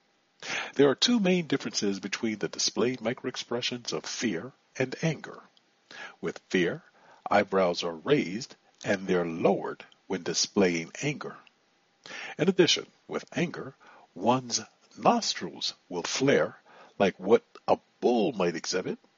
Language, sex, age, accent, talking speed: English, male, 60-79, American, 120 wpm